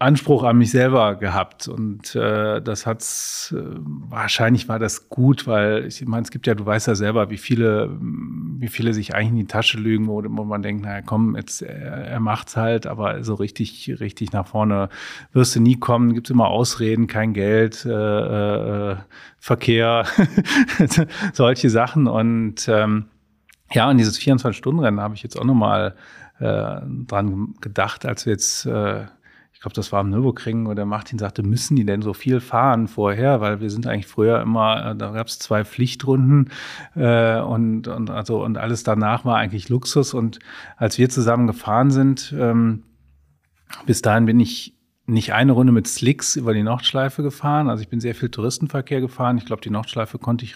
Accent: German